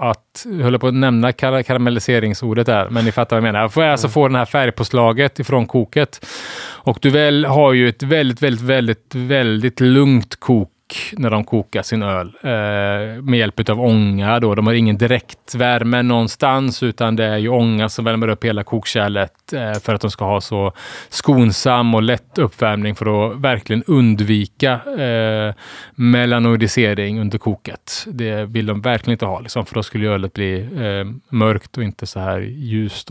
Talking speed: 185 wpm